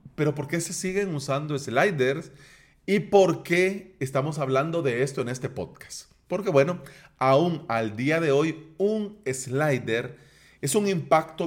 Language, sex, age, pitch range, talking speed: Spanish, male, 30-49, 130-170 Hz, 150 wpm